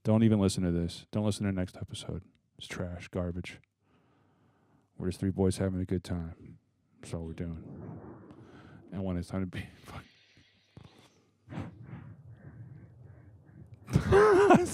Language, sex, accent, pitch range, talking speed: English, male, American, 95-120 Hz, 135 wpm